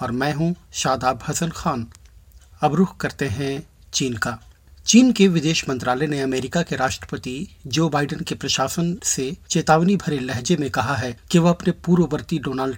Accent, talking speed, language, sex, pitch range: native, 170 wpm, Hindi, male, 125-150 Hz